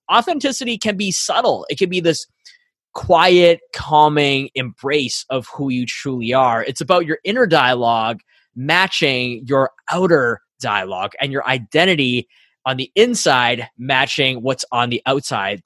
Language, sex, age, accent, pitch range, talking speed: English, male, 20-39, American, 125-165 Hz, 140 wpm